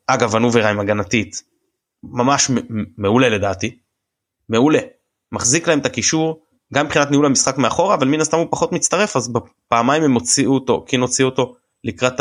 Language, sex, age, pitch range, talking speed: Hebrew, male, 20-39, 110-145 Hz, 150 wpm